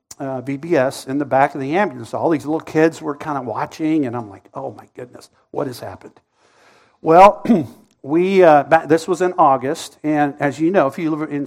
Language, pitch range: English, 135-160 Hz